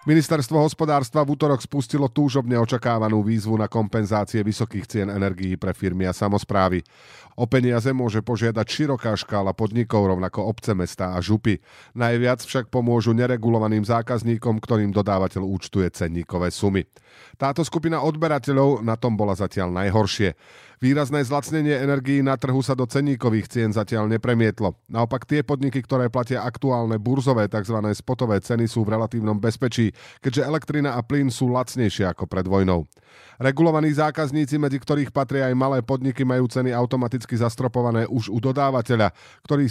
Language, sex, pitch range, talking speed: Slovak, male, 105-135 Hz, 145 wpm